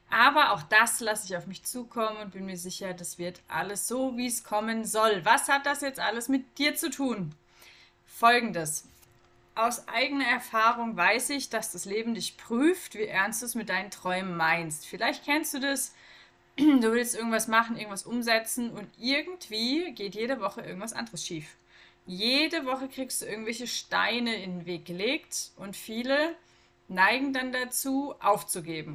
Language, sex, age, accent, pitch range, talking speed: German, female, 30-49, German, 195-270 Hz, 170 wpm